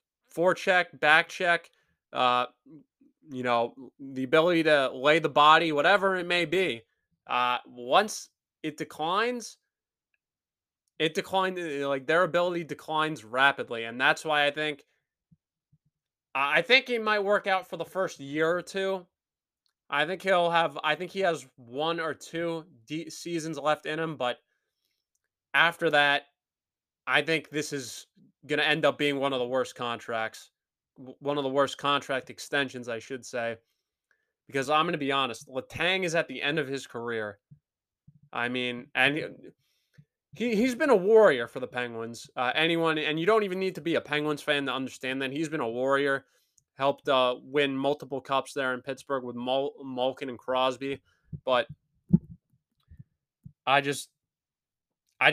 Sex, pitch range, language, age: male, 130-165 Hz, English, 20-39